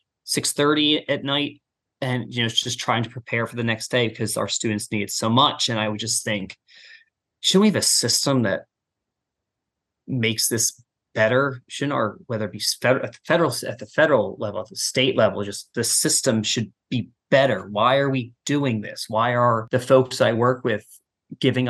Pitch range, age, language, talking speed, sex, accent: 110-130 Hz, 20-39, English, 200 wpm, male, American